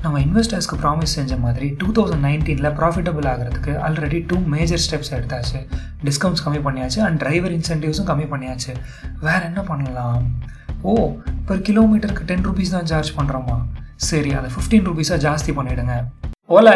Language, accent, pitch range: Tamil, native, 140-175 Hz